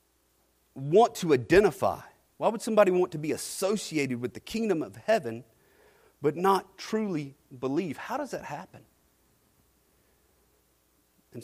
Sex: male